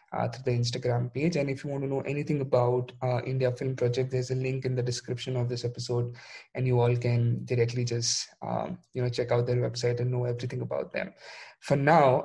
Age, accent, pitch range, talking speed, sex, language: 20-39, Indian, 125-145 Hz, 225 wpm, male, English